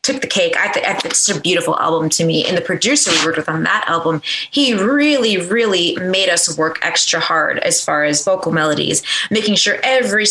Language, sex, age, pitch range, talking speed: English, female, 20-39, 180-245 Hz, 210 wpm